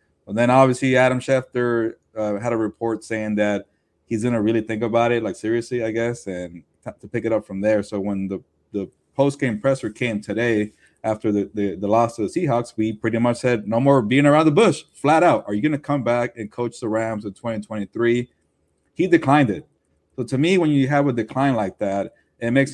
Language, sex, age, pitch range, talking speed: English, male, 20-39, 110-130 Hz, 220 wpm